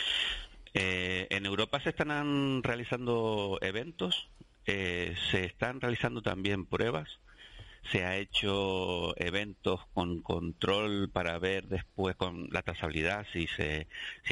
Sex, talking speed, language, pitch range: male, 115 wpm, Spanish, 85-105 Hz